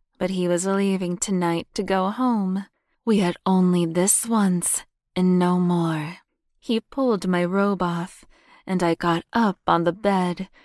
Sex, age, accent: female, 20-39, American